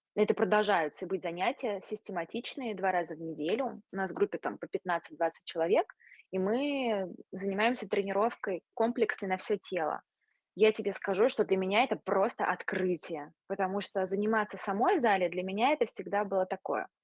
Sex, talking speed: female, 160 wpm